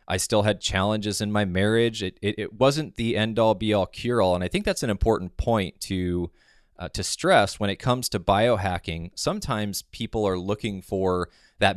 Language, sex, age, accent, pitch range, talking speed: English, male, 20-39, American, 95-115 Hz, 190 wpm